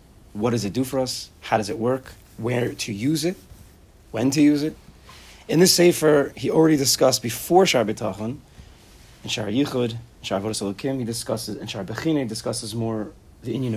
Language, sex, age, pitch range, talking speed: English, male, 30-49, 110-135 Hz, 185 wpm